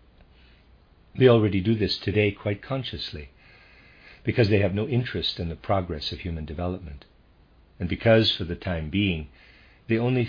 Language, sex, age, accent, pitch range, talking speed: English, male, 50-69, American, 80-105 Hz, 150 wpm